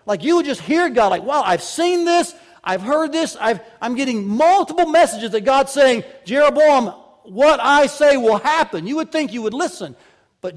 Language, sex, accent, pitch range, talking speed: English, male, American, 150-235 Hz, 195 wpm